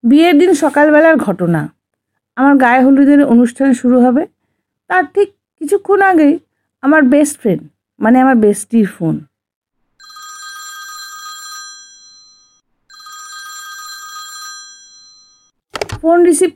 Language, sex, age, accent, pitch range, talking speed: Bengali, female, 50-69, native, 220-315 Hz, 75 wpm